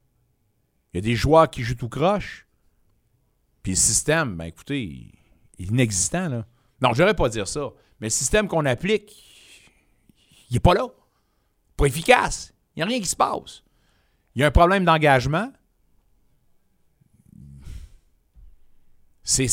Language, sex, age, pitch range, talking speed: French, male, 60-79, 125-185 Hz, 150 wpm